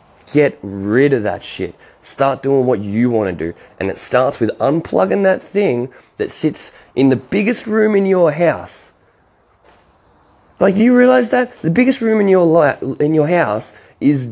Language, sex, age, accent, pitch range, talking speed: English, male, 20-39, Australian, 105-155 Hz, 170 wpm